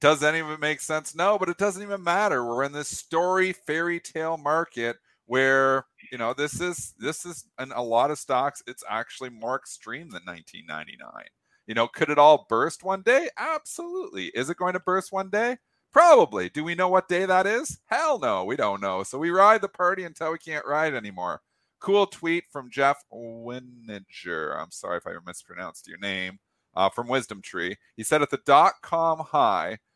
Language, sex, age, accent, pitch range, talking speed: English, male, 40-59, American, 115-170 Hz, 200 wpm